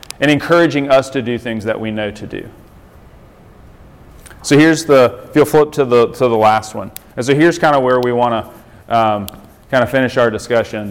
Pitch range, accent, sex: 110-140 Hz, American, male